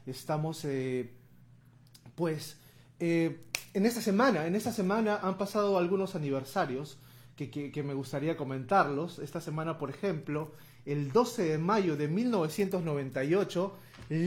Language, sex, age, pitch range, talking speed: Spanish, male, 30-49, 135-195 Hz, 125 wpm